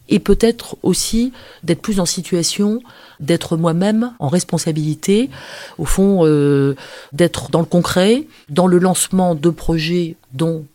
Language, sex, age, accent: French, female, 30-49, French